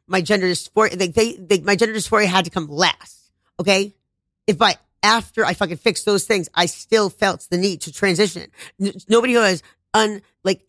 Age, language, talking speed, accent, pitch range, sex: 30-49, English, 190 wpm, American, 170-215 Hz, female